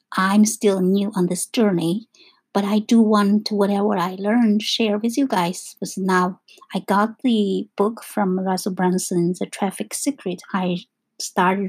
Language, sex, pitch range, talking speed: English, female, 190-230 Hz, 170 wpm